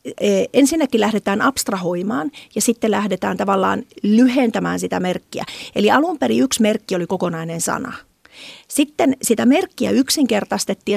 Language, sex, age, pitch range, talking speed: Finnish, female, 40-59, 185-240 Hz, 120 wpm